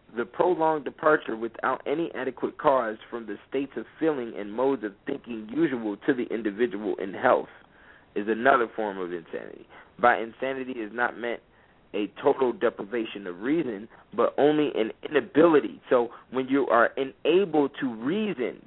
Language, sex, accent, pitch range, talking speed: English, male, American, 115-145 Hz, 155 wpm